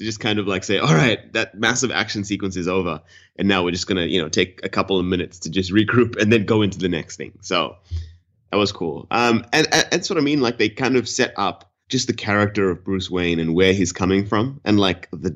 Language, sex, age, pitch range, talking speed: English, male, 20-39, 90-105 Hz, 260 wpm